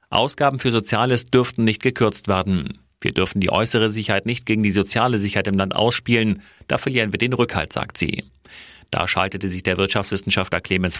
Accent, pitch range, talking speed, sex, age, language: German, 95-115 Hz, 180 wpm, male, 40-59, German